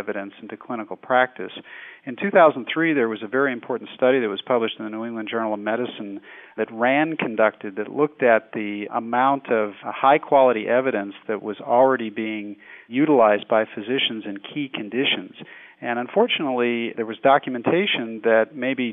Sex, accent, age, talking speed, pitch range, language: male, American, 40-59, 160 wpm, 110-130 Hz, English